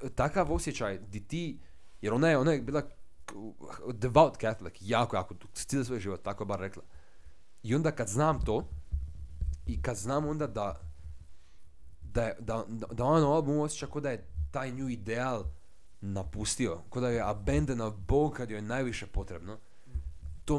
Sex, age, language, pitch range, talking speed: male, 30-49, Croatian, 80-125 Hz, 165 wpm